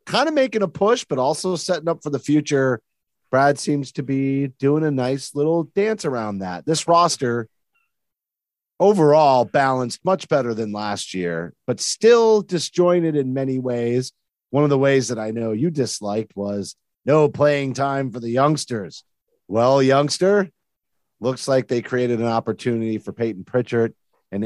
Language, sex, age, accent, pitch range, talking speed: English, male, 40-59, American, 110-140 Hz, 160 wpm